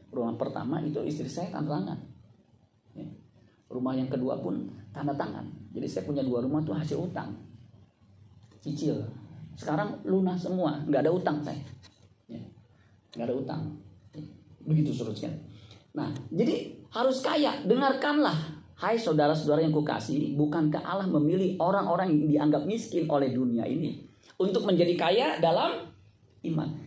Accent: native